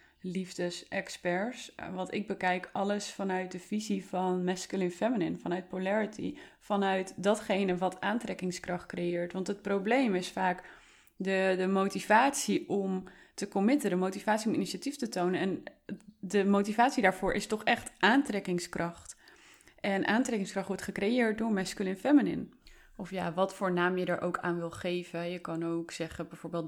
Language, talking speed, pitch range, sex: Dutch, 150 wpm, 175-200 Hz, female